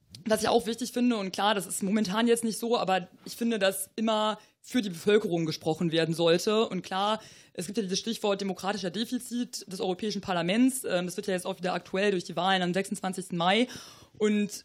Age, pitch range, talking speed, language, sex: 20-39, 185-215 Hz, 205 wpm, German, female